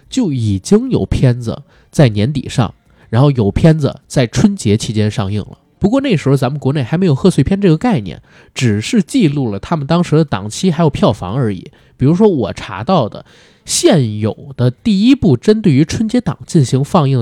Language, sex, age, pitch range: Chinese, male, 20-39, 120-180 Hz